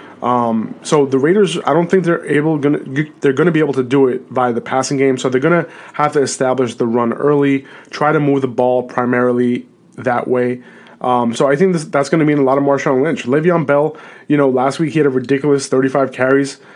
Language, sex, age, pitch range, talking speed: English, male, 20-39, 125-145 Hz, 225 wpm